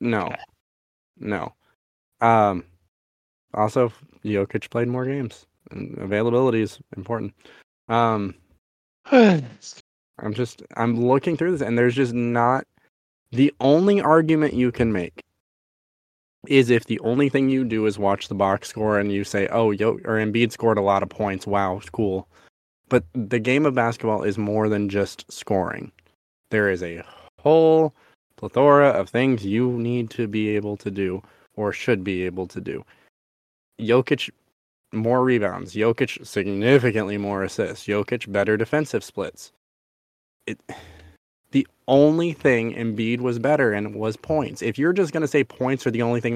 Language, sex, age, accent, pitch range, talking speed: English, male, 20-39, American, 100-130 Hz, 155 wpm